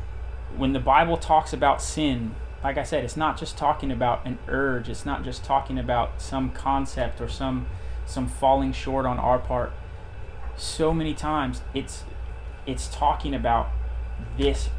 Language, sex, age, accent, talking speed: English, male, 20-39, American, 160 wpm